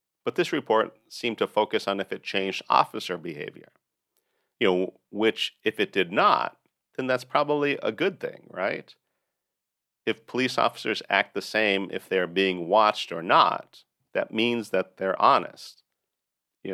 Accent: American